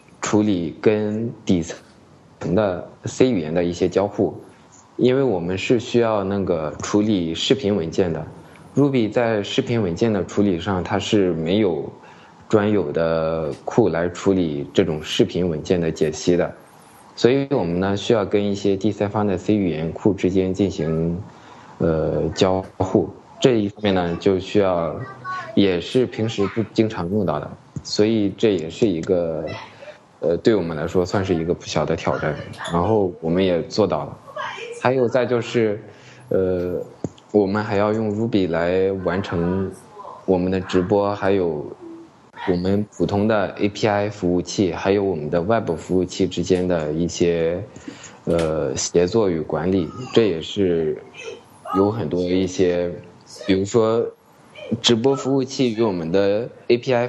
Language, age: Chinese, 20-39